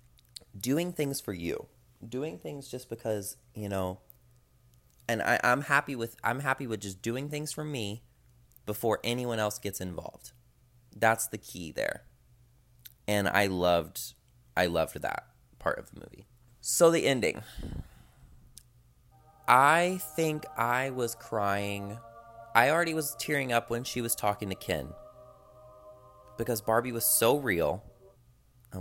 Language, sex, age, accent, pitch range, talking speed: English, male, 30-49, American, 100-125 Hz, 135 wpm